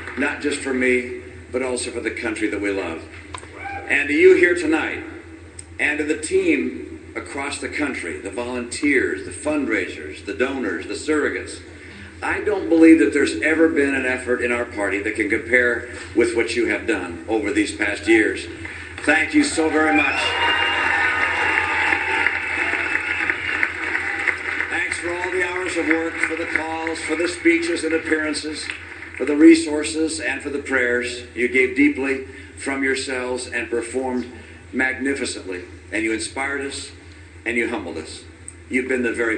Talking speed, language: 155 wpm, English